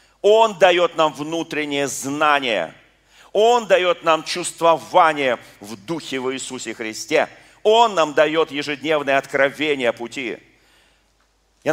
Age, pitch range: 40-59, 115-150 Hz